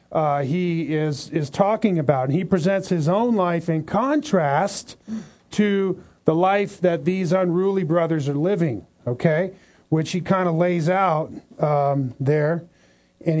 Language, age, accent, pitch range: English, 40-59, American, 165-200 Hz